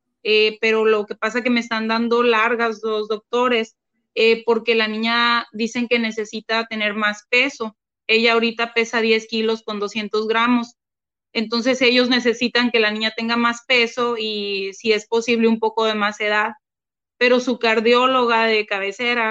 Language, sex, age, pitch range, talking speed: Spanish, female, 30-49, 220-235 Hz, 170 wpm